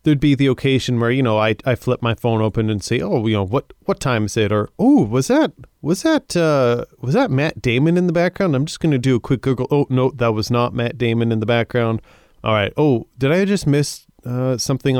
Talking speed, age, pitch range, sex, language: 255 wpm, 30-49, 115-140 Hz, male, English